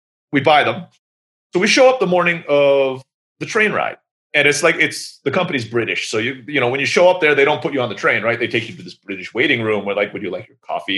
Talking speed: 285 wpm